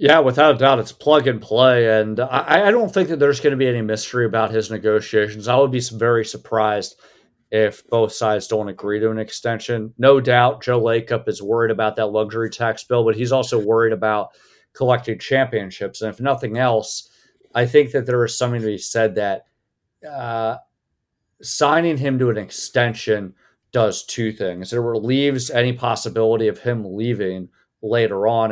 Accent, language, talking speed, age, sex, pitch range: American, English, 180 wpm, 40-59, male, 105-125 Hz